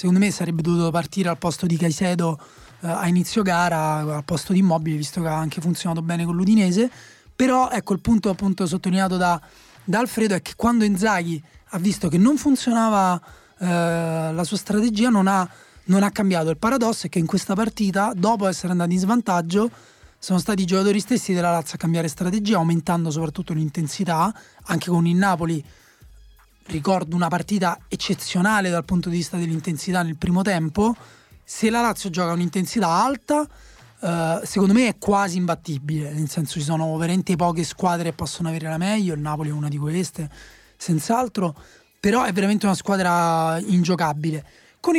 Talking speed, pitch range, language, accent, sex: 175 wpm, 170-205 Hz, Italian, native, male